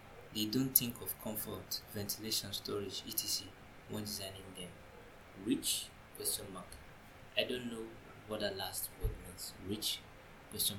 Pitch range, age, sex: 95-120 Hz, 20-39, male